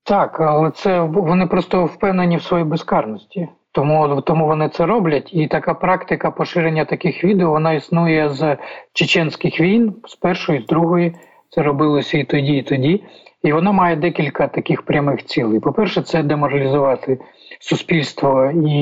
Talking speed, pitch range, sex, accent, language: 150 wpm, 140-165 Hz, male, native, Ukrainian